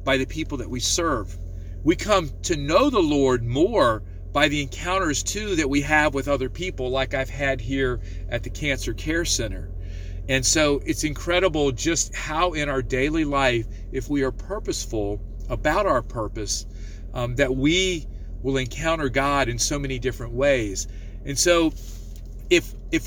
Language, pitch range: English, 110-150 Hz